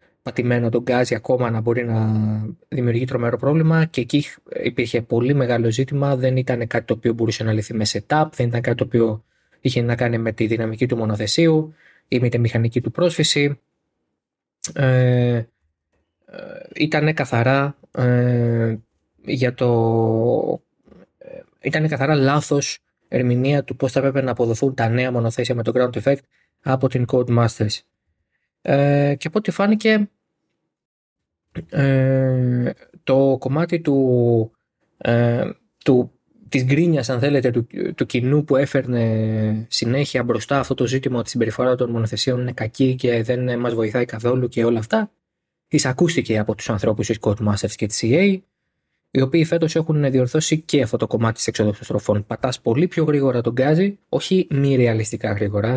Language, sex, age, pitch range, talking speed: Greek, male, 20-39, 115-140 Hz, 155 wpm